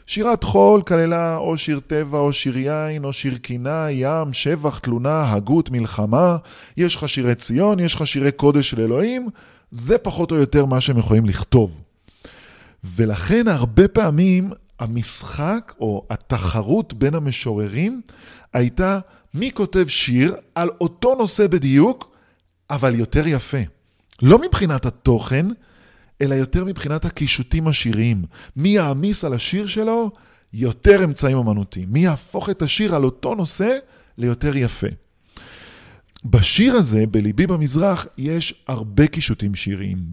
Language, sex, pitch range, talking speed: Hebrew, male, 115-170 Hz, 130 wpm